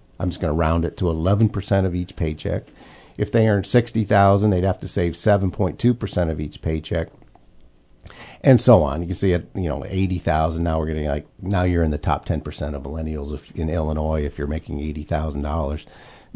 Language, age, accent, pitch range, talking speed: English, 50-69, American, 85-110 Hz, 185 wpm